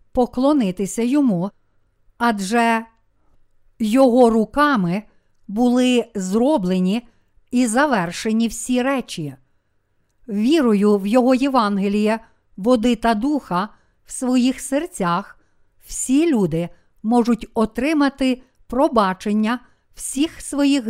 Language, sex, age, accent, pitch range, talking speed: Ukrainian, female, 50-69, native, 200-260 Hz, 80 wpm